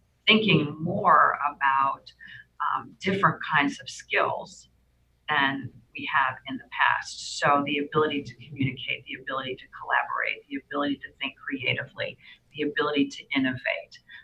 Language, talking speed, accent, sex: English, 135 wpm, American, female